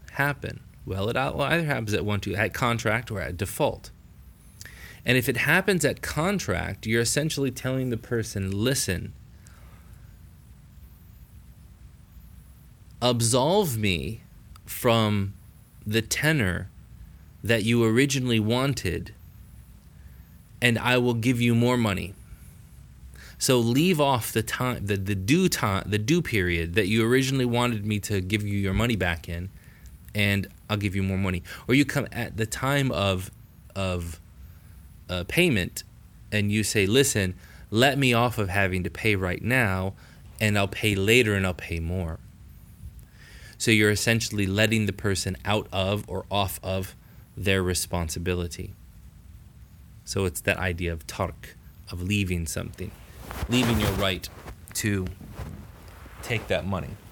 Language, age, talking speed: English, 20-39, 140 wpm